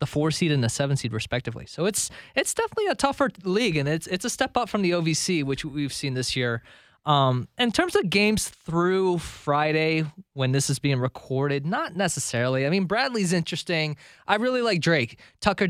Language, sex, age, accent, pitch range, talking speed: English, male, 20-39, American, 130-180 Hz, 200 wpm